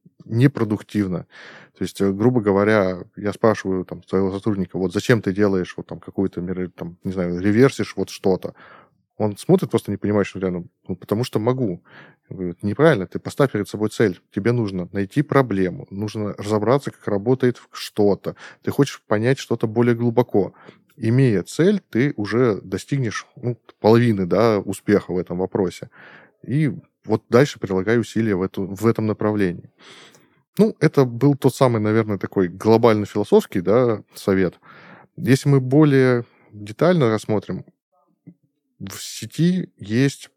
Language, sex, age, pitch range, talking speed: Russian, male, 20-39, 100-125 Hz, 145 wpm